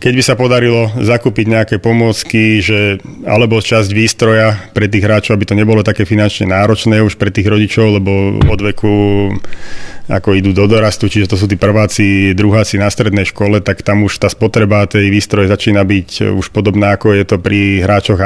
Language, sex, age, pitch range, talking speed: Slovak, male, 30-49, 100-110 Hz, 185 wpm